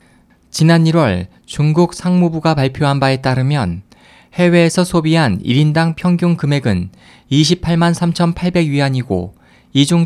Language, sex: Korean, male